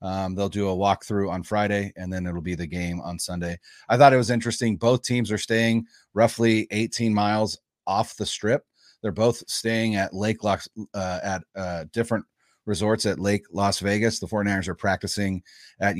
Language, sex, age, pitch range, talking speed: English, male, 30-49, 95-115 Hz, 190 wpm